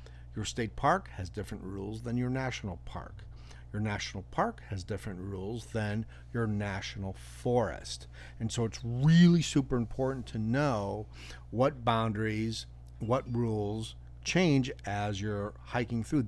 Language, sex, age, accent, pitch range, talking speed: English, male, 50-69, American, 90-130 Hz, 135 wpm